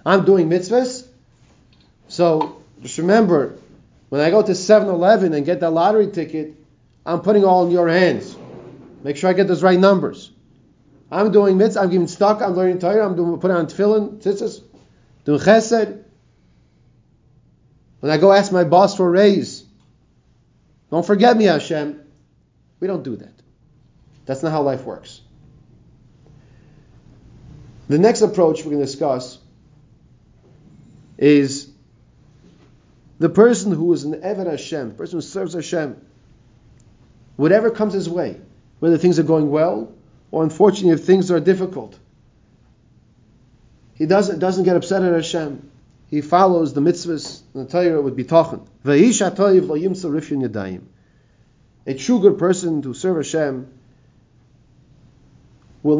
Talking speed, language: 135 wpm, English